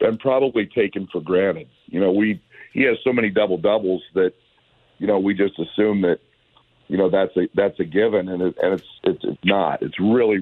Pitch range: 90-105 Hz